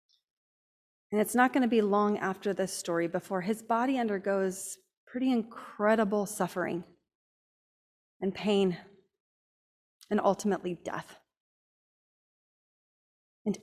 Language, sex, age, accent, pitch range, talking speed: English, female, 30-49, American, 175-215 Hz, 95 wpm